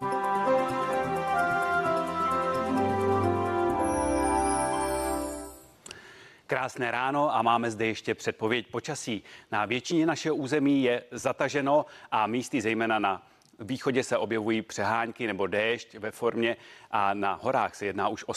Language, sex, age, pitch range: Czech, male, 30-49, 115-140 Hz